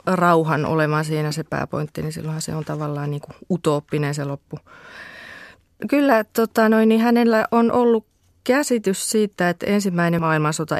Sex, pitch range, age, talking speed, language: female, 150-195 Hz, 30-49, 150 wpm, Finnish